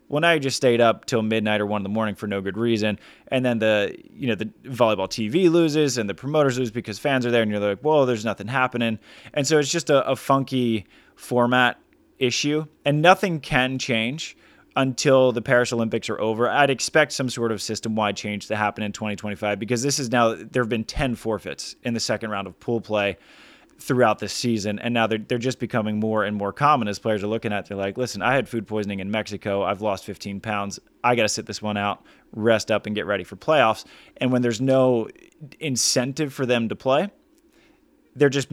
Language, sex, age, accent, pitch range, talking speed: English, male, 20-39, American, 105-135 Hz, 225 wpm